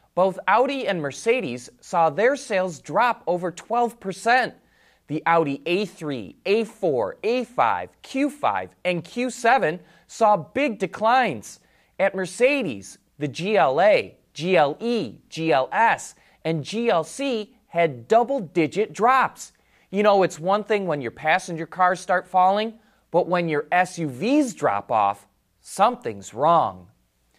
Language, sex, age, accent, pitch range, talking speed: English, male, 30-49, American, 150-230 Hz, 110 wpm